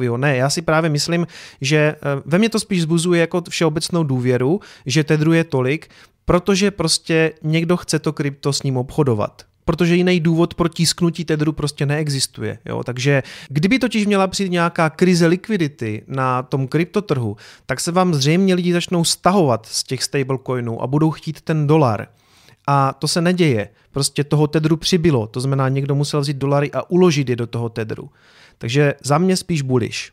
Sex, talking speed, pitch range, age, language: male, 175 wpm, 140-165 Hz, 30-49, Czech